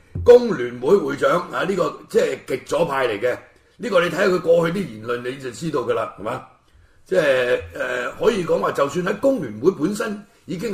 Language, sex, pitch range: Chinese, male, 150-225 Hz